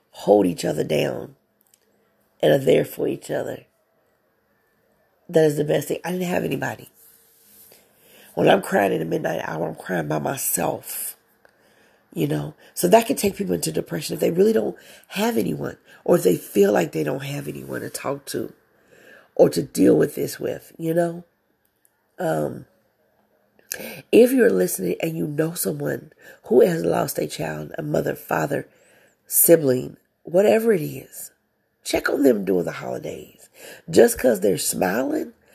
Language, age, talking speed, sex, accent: English, 40-59, 160 wpm, female, American